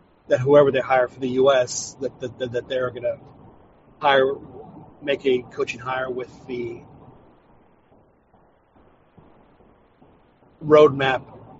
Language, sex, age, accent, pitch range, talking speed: English, male, 40-59, American, 125-140 Hz, 95 wpm